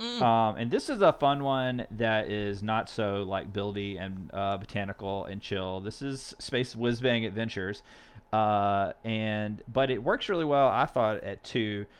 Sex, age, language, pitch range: male, 30-49, English, 95-115 Hz